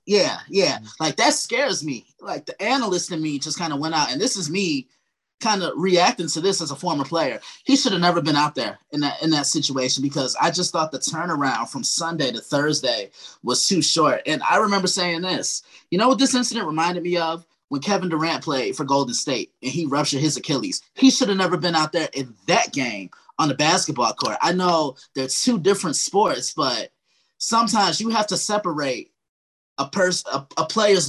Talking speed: 210 wpm